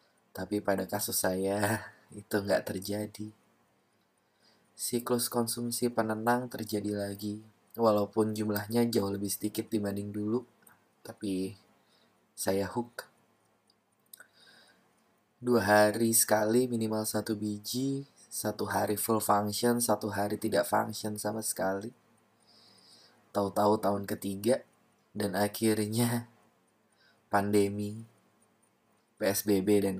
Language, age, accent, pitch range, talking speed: Indonesian, 20-39, native, 100-115 Hz, 90 wpm